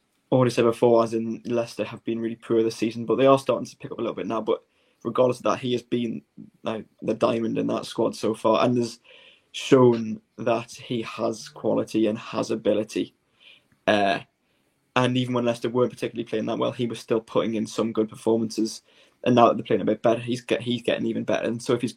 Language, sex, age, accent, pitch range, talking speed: English, male, 20-39, British, 115-120 Hz, 230 wpm